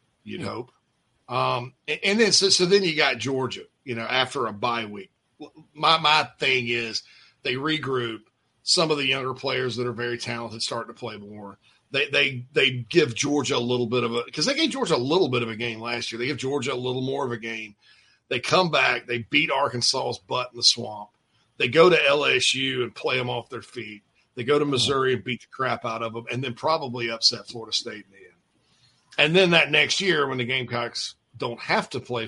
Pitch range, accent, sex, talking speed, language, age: 115-145 Hz, American, male, 220 wpm, English, 40-59